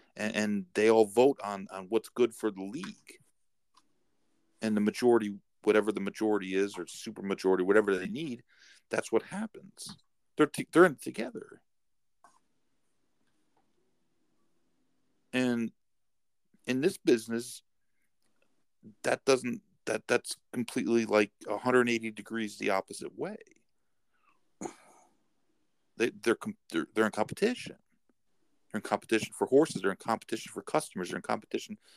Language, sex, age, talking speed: English, male, 50-69, 125 wpm